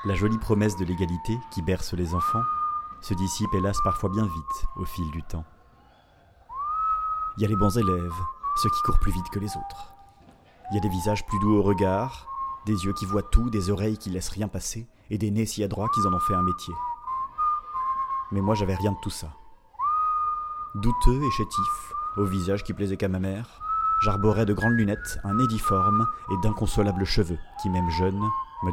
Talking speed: 200 wpm